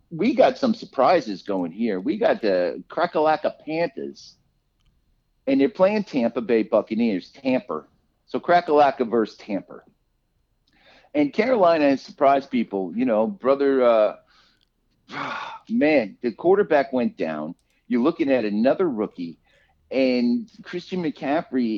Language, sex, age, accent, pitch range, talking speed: English, male, 50-69, American, 110-180 Hz, 120 wpm